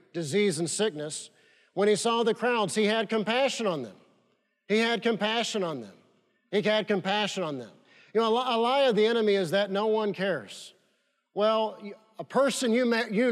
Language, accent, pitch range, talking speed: English, American, 180-220 Hz, 185 wpm